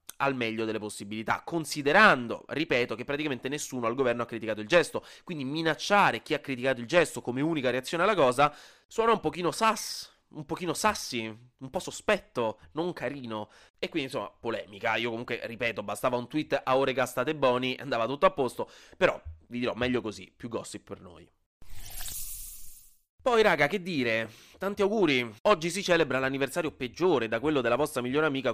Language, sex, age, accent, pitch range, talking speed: Italian, male, 20-39, native, 115-160 Hz, 175 wpm